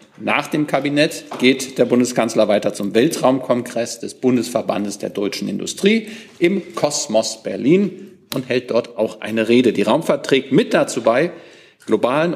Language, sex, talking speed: German, male, 145 wpm